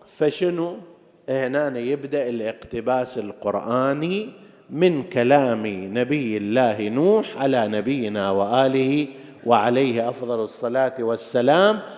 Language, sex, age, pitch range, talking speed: Arabic, male, 50-69, 115-160 Hz, 85 wpm